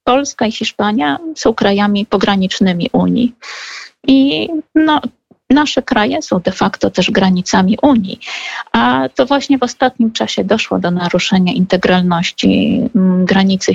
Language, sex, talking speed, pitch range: Polish, female, 120 wpm, 195-265 Hz